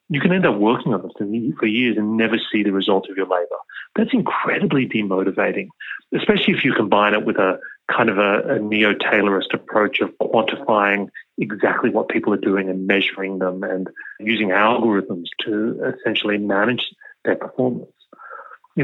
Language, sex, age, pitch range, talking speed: English, male, 30-49, 100-125 Hz, 170 wpm